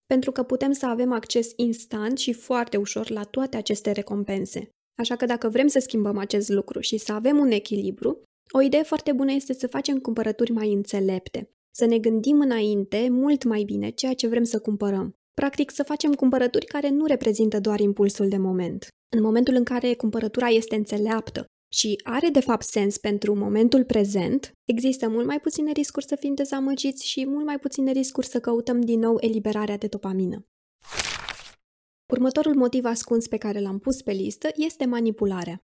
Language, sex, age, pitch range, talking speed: Romanian, female, 20-39, 215-270 Hz, 180 wpm